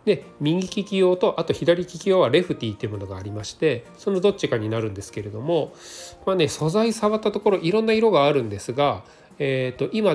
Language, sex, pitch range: Japanese, male, 120-190 Hz